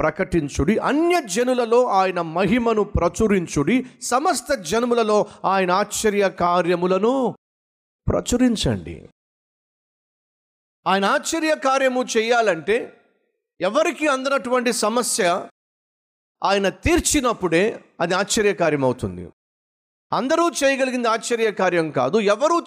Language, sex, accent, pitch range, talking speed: Telugu, male, native, 185-260 Hz, 70 wpm